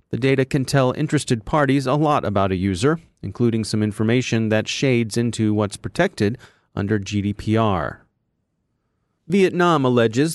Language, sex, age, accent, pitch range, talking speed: English, male, 30-49, American, 110-145 Hz, 135 wpm